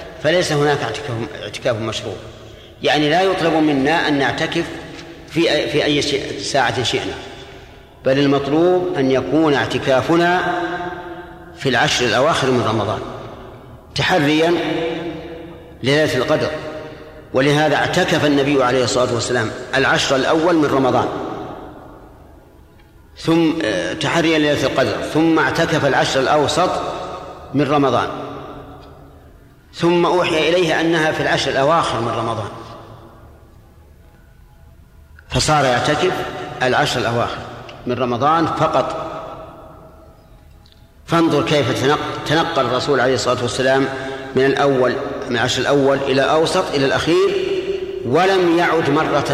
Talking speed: 100 wpm